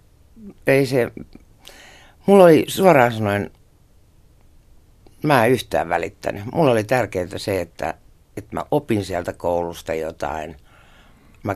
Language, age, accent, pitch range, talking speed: Finnish, 60-79, native, 85-110 Hz, 115 wpm